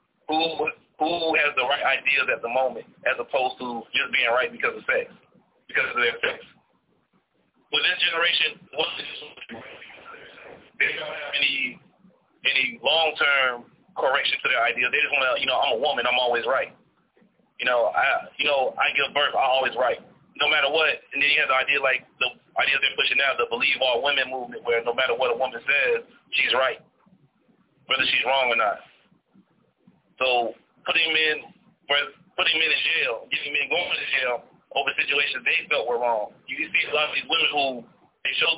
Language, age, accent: English, 30-49, American